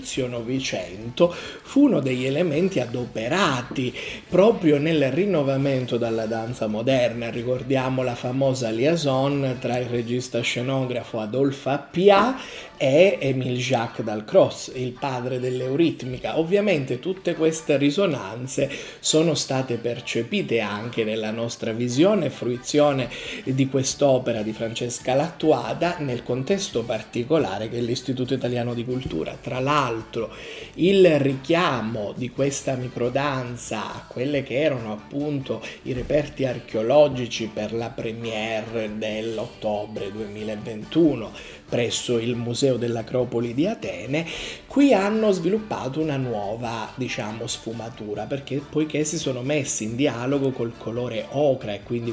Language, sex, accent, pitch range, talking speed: Italian, male, native, 115-150 Hz, 115 wpm